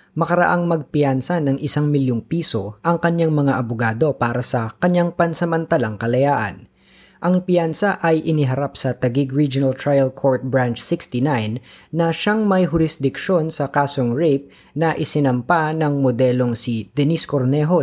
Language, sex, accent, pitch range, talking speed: Filipino, female, native, 125-165 Hz, 135 wpm